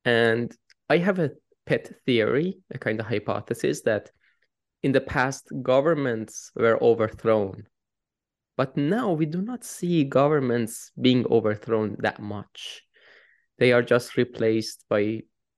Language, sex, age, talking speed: English, male, 20-39, 125 wpm